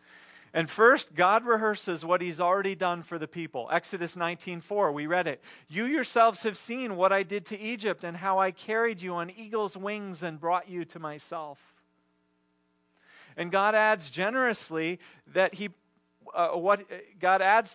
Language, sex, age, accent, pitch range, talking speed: English, male, 40-59, American, 165-205 Hz, 160 wpm